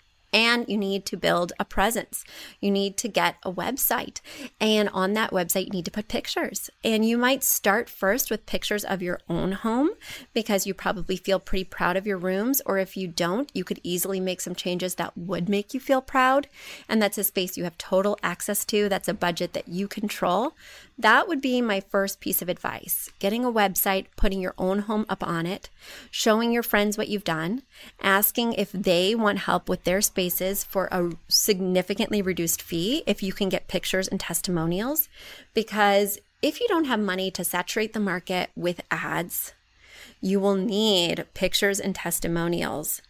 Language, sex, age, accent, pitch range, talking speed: English, female, 30-49, American, 180-215 Hz, 190 wpm